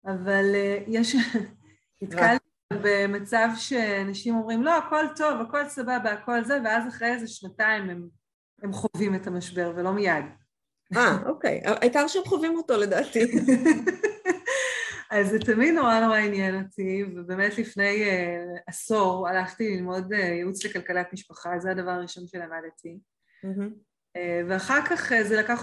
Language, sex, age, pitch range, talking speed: Hebrew, female, 30-49, 185-230 Hz, 125 wpm